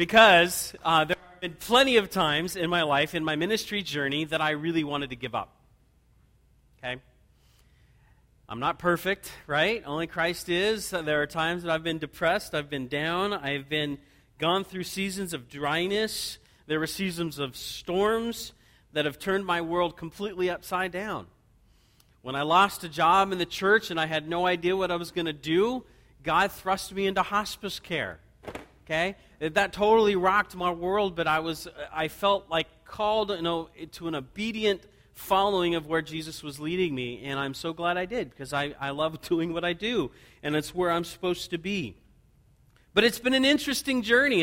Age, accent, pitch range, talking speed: 40-59, American, 155-195 Hz, 185 wpm